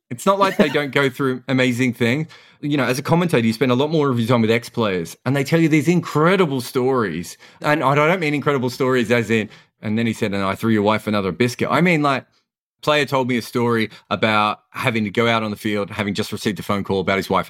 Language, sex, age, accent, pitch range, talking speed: English, male, 30-49, Australian, 110-160 Hz, 260 wpm